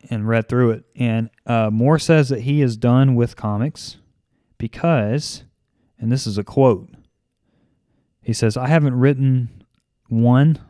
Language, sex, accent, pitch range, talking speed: English, male, American, 105-125 Hz, 145 wpm